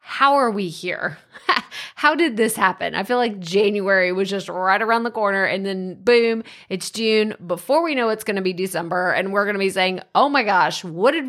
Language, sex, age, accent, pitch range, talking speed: English, female, 20-39, American, 185-245 Hz, 215 wpm